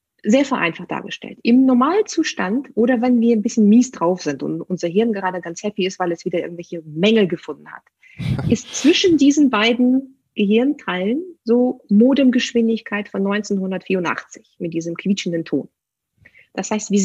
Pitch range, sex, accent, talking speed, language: 195-255 Hz, female, German, 150 wpm, German